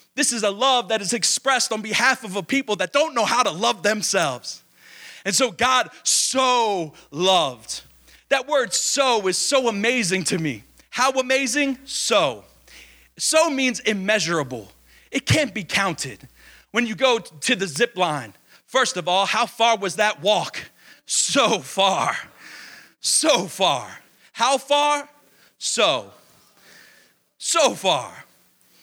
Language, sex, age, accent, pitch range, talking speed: English, male, 30-49, American, 180-270 Hz, 135 wpm